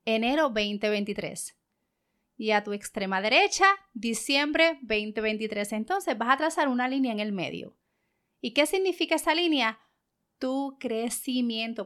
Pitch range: 220-295 Hz